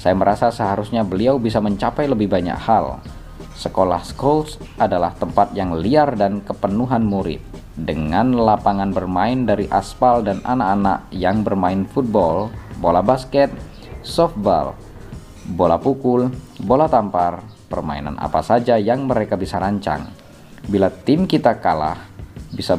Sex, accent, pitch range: male, native, 85-115 Hz